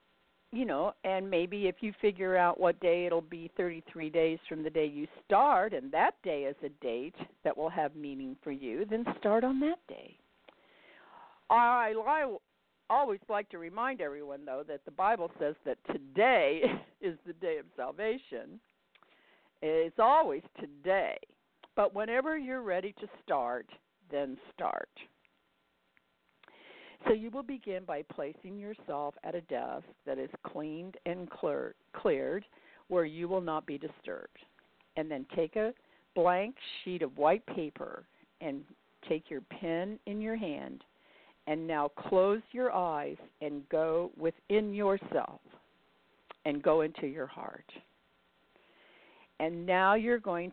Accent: American